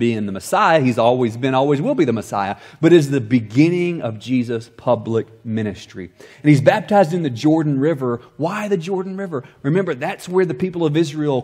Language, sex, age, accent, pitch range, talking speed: English, male, 30-49, American, 115-150 Hz, 195 wpm